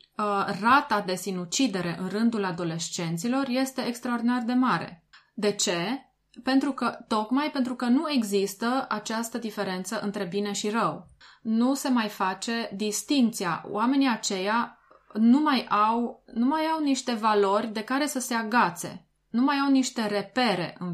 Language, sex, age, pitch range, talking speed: Romanian, female, 20-39, 195-250 Hz, 145 wpm